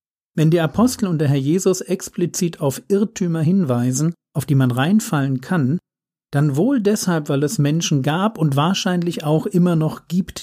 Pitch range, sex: 135-180 Hz, male